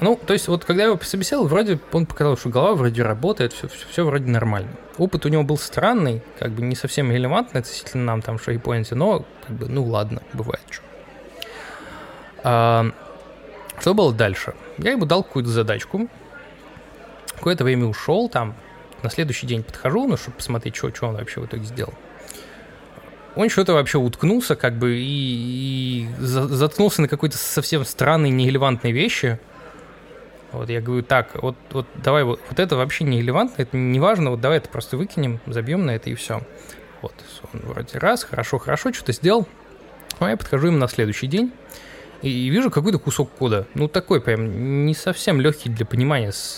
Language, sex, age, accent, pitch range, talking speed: Russian, male, 20-39, native, 120-155 Hz, 175 wpm